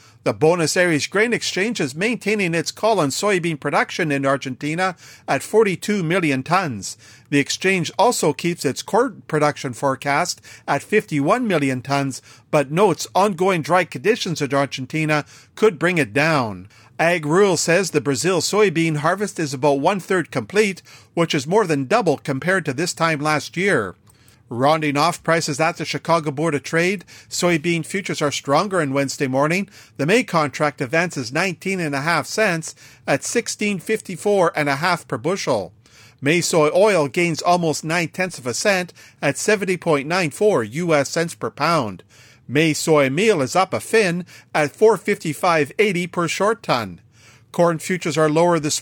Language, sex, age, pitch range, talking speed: English, male, 50-69, 140-185 Hz, 155 wpm